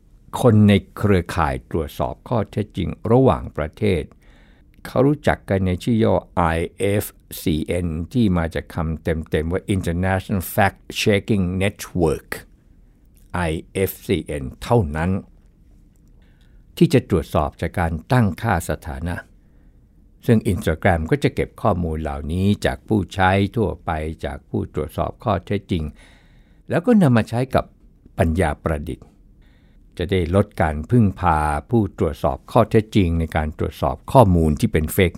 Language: Thai